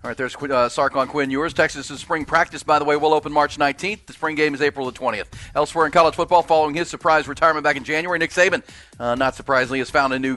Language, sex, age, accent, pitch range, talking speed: English, male, 40-59, American, 135-155 Hz, 260 wpm